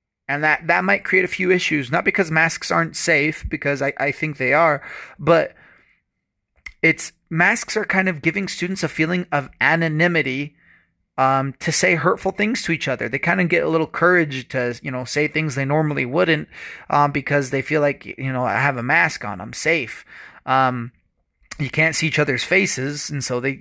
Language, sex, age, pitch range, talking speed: English, male, 30-49, 130-175 Hz, 200 wpm